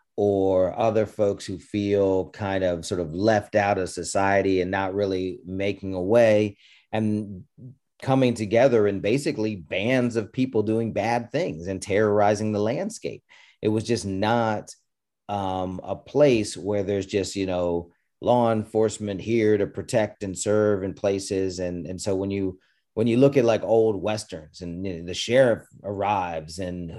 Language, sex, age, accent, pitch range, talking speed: English, male, 40-59, American, 95-110 Hz, 165 wpm